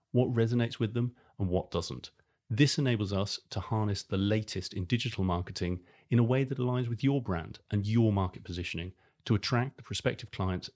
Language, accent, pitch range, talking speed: English, British, 95-115 Hz, 190 wpm